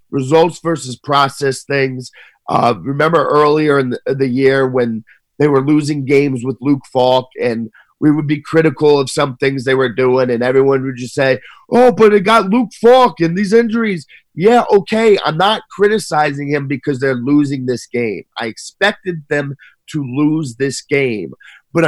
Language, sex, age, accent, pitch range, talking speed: English, male, 30-49, American, 135-175 Hz, 175 wpm